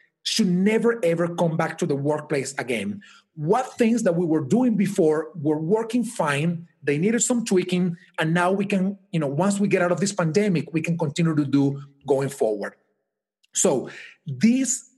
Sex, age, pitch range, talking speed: male, 40-59, 150-190 Hz, 180 wpm